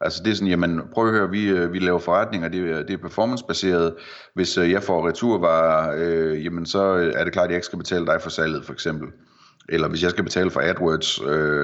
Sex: male